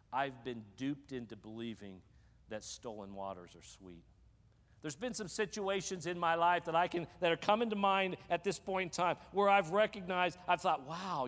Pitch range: 100-170 Hz